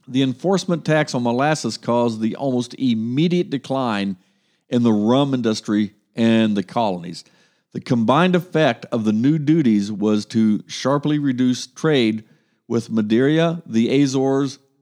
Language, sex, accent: English, male, American